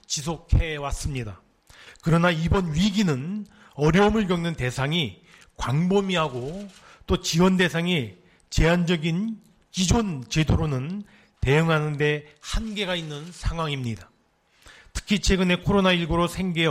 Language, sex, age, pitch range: Korean, male, 40-59, 150-185 Hz